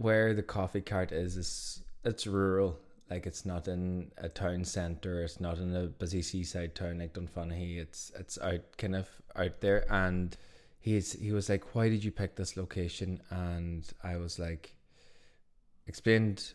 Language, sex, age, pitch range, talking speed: English, male, 20-39, 85-100 Hz, 170 wpm